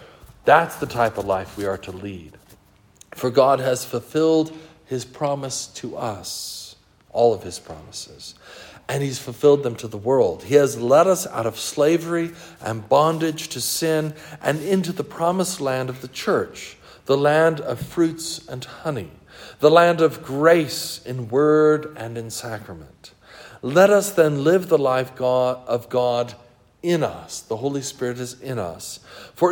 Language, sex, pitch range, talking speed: English, male, 110-150 Hz, 160 wpm